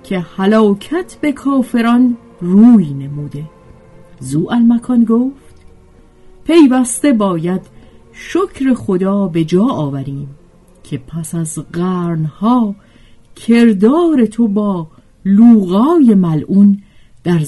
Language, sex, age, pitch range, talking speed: Persian, female, 50-69, 150-245 Hz, 85 wpm